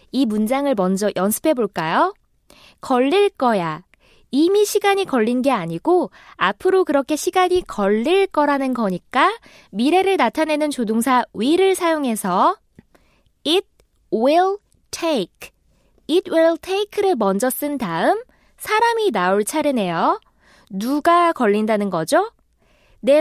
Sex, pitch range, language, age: female, 225-365 Hz, Korean, 20-39